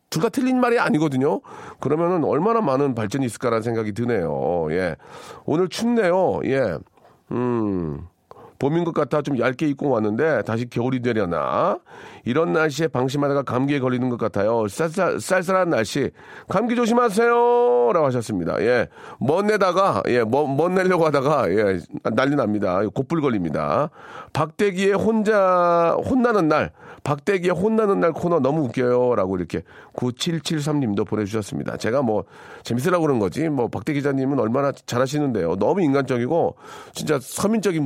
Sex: male